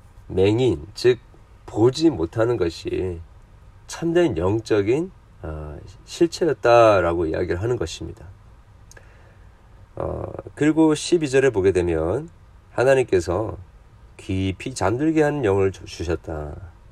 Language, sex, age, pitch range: Korean, male, 40-59, 90-115 Hz